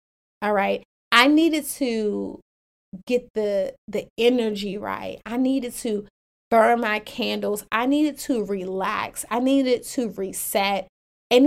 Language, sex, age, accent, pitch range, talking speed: English, female, 30-49, American, 200-255 Hz, 130 wpm